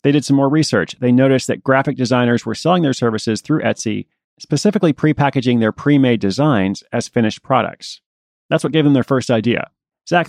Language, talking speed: English, 185 wpm